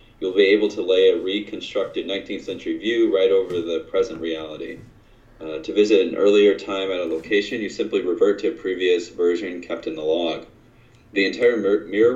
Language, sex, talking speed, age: English, male, 185 wpm, 30-49